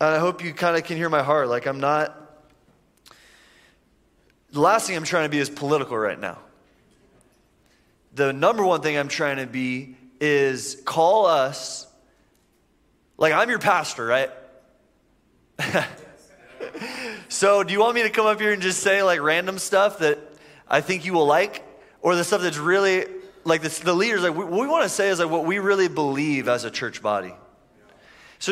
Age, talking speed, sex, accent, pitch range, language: 20-39, 180 wpm, male, American, 145-190 Hz, English